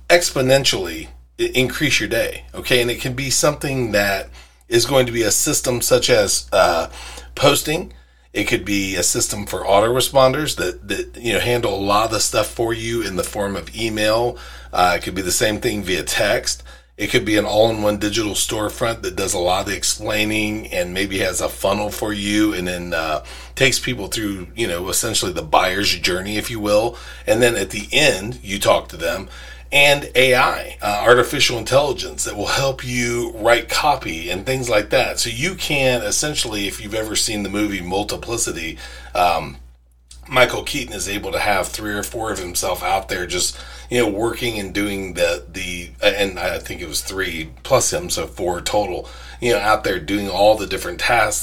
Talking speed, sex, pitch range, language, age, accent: 195 wpm, male, 90-120 Hz, English, 40-59, American